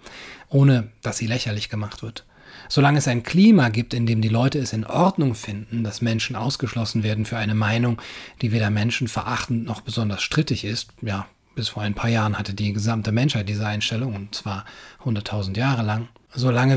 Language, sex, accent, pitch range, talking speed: German, male, German, 110-125 Hz, 185 wpm